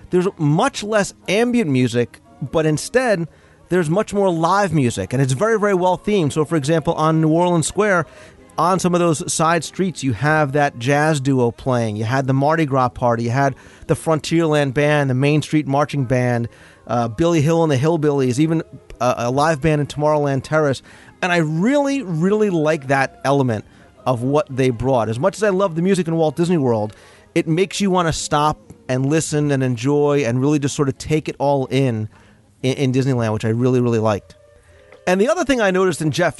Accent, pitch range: American, 130-170 Hz